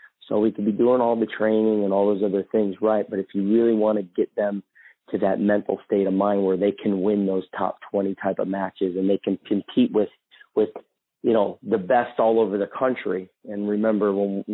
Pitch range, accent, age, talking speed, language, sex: 100-115 Hz, American, 40-59, 225 wpm, English, male